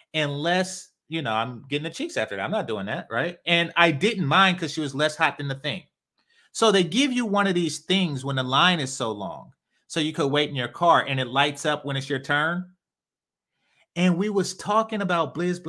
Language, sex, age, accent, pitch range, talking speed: English, male, 30-49, American, 135-190 Hz, 235 wpm